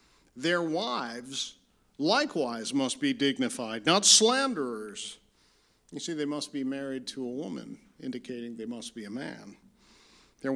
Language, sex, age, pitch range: English, male, 50-69, 125-175 Hz